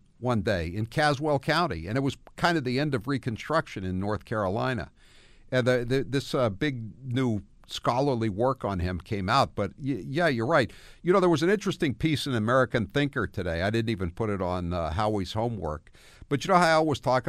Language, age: English, 60-79